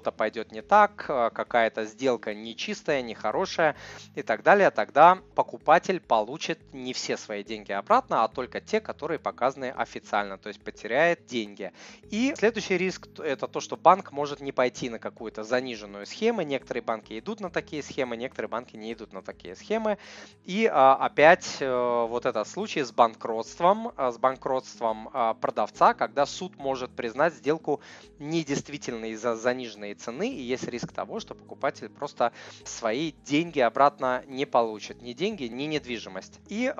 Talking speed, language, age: 150 wpm, Russian, 20-39